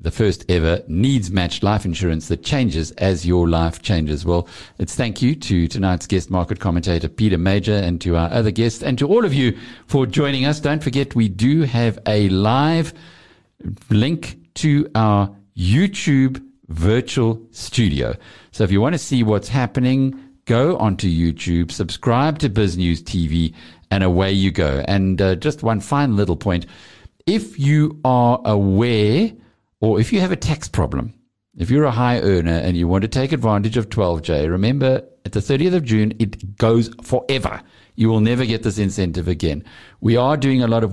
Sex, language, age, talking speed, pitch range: male, English, 50-69, 180 wpm, 90-120 Hz